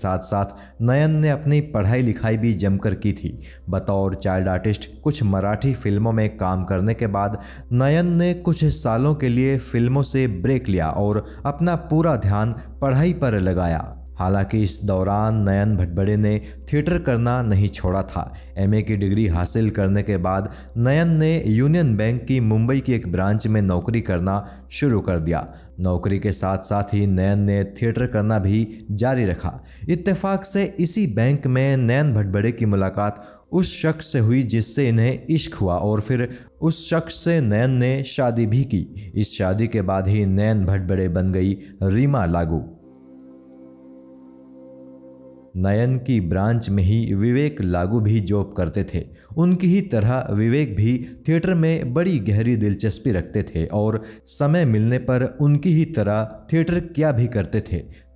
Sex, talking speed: male, 160 wpm